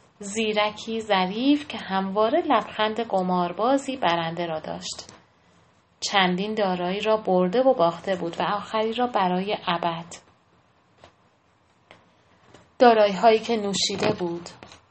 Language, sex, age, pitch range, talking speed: Persian, female, 30-49, 180-215 Hz, 100 wpm